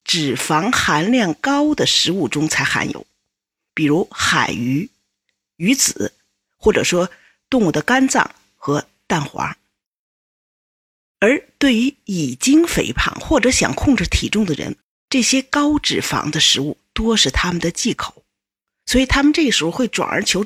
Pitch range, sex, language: 175-265 Hz, female, Chinese